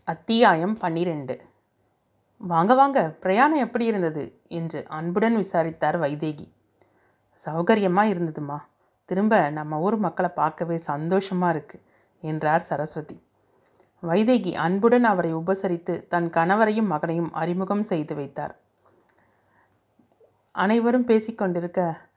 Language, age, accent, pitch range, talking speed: Tamil, 30-49, native, 155-190 Hz, 90 wpm